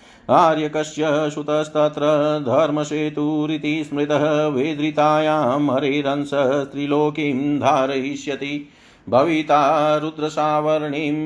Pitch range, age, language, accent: 135-150 Hz, 50-69, Hindi, native